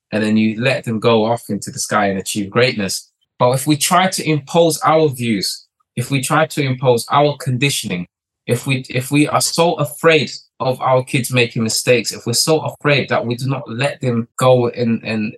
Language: English